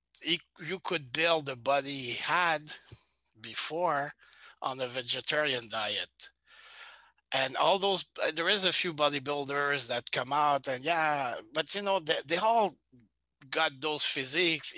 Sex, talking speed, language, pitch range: male, 140 wpm, English, 120-170 Hz